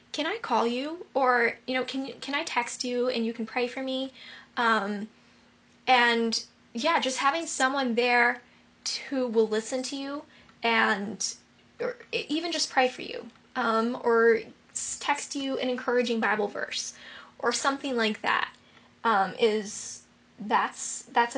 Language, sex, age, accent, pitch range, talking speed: English, female, 10-29, American, 225-265 Hz, 150 wpm